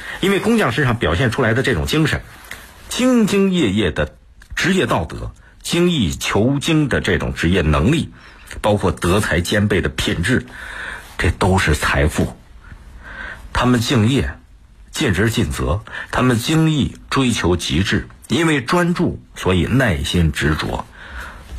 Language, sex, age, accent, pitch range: Chinese, male, 50-69, native, 75-115 Hz